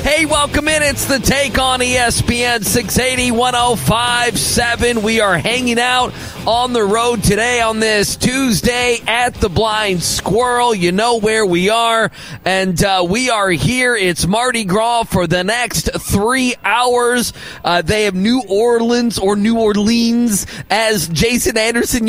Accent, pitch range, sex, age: American, 195-240 Hz, male, 30-49